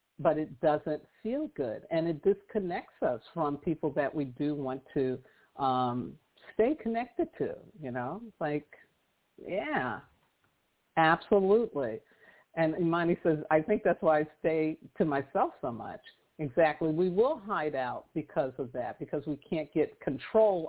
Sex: female